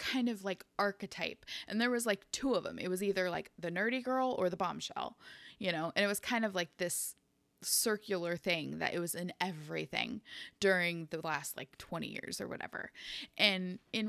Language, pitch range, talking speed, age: English, 170-205 Hz, 200 wpm, 20-39